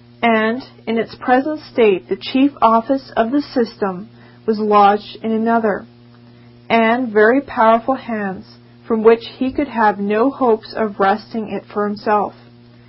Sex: female